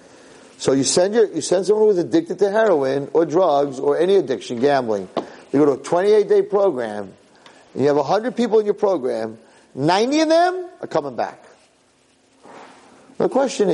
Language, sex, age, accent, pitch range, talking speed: English, male, 50-69, American, 120-175 Hz, 175 wpm